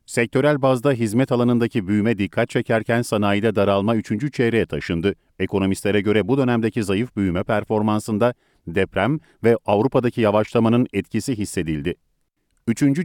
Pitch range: 105-125 Hz